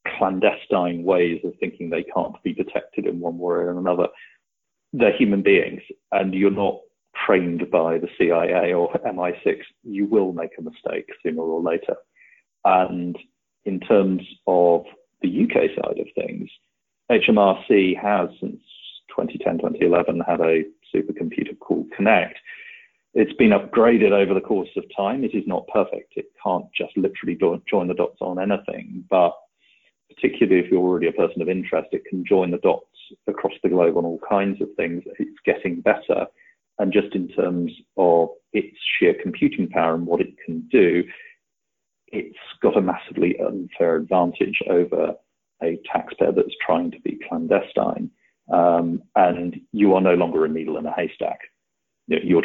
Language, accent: English, British